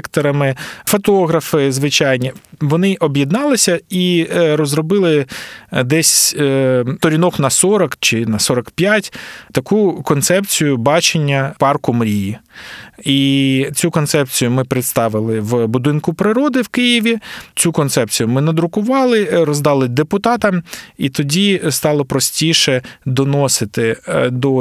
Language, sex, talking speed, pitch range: Ukrainian, male, 100 wpm, 130-175 Hz